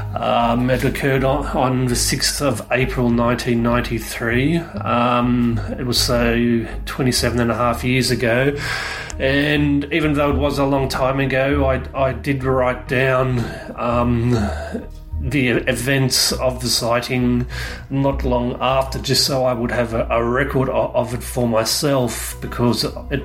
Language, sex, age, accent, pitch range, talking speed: English, male, 30-49, Australian, 120-140 Hz, 150 wpm